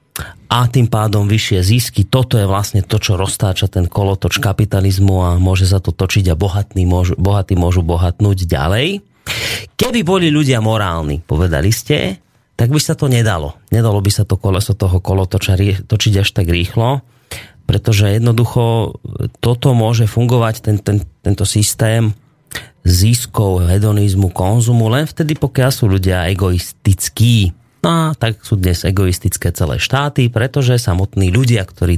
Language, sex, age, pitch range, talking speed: Slovak, male, 30-49, 95-120 Hz, 150 wpm